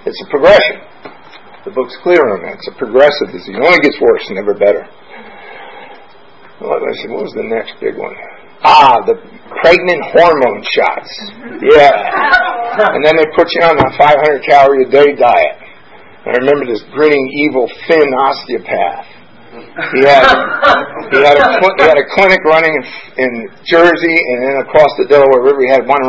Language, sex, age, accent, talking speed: English, male, 50-69, American, 155 wpm